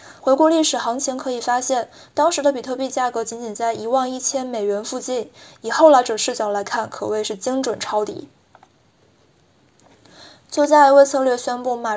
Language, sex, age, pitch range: Chinese, female, 20-39, 230-275 Hz